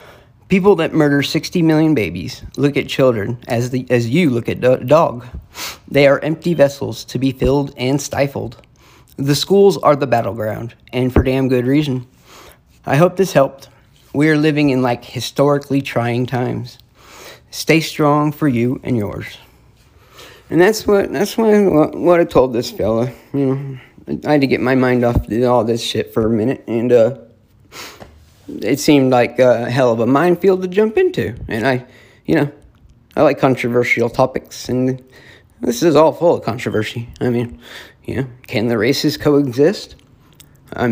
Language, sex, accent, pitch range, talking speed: English, male, American, 120-150 Hz, 170 wpm